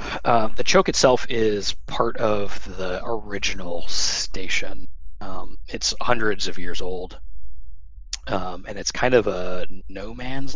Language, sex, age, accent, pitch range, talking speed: English, male, 30-49, American, 65-90 Hz, 135 wpm